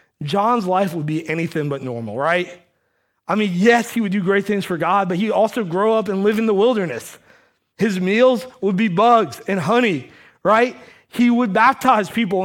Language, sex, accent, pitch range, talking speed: English, male, American, 140-210 Hz, 195 wpm